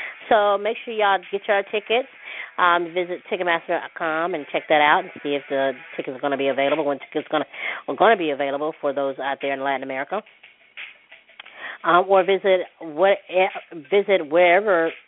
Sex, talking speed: female, 180 wpm